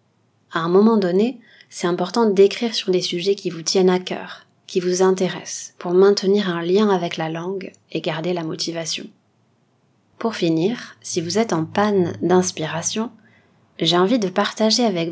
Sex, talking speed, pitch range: female, 165 wpm, 165-200 Hz